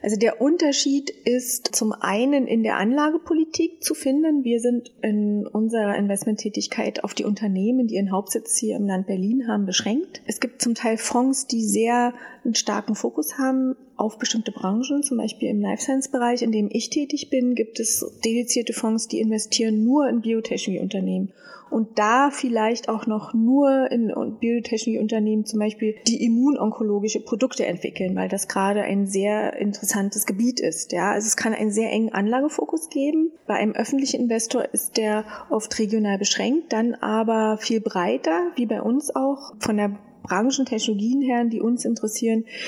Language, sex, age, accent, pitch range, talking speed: German, female, 30-49, German, 215-250 Hz, 165 wpm